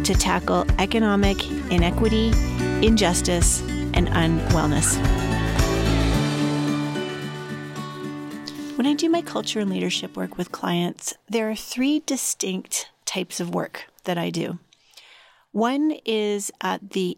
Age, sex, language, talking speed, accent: 30-49, female, English, 110 wpm, American